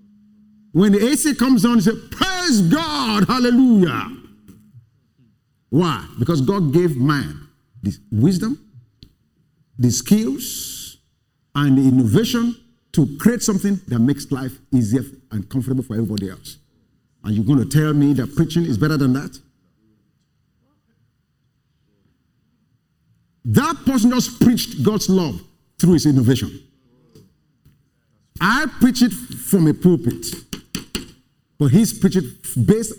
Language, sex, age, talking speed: English, male, 50-69, 120 wpm